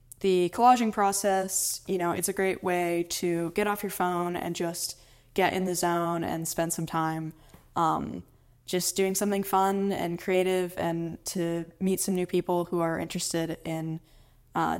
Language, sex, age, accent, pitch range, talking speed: English, female, 10-29, American, 170-195 Hz, 170 wpm